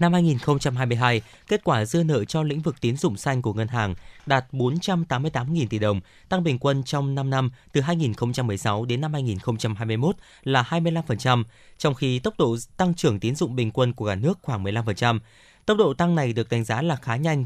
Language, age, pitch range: Vietnamese, 20-39, 115-160 Hz